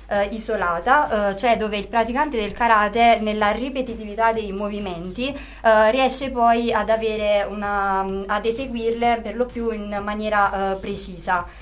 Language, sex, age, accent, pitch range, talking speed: Italian, female, 20-39, native, 195-230 Hz, 145 wpm